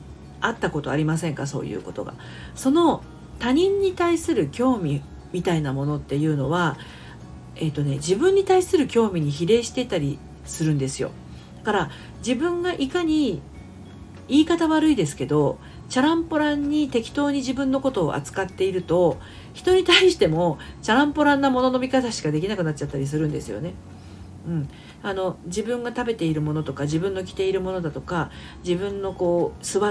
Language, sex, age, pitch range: Japanese, female, 40-59, 145-235 Hz